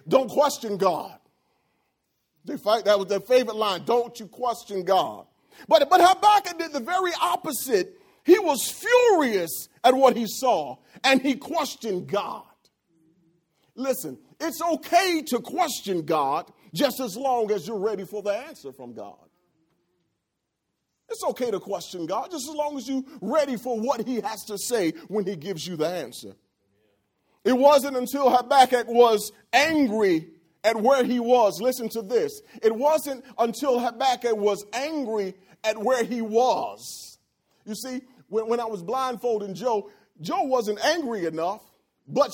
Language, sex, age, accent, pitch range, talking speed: English, male, 40-59, American, 205-275 Hz, 150 wpm